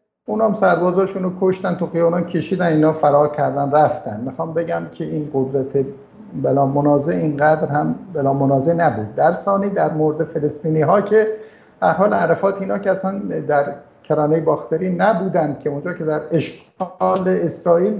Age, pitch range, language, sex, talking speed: 50-69, 155-195 Hz, Persian, male, 150 wpm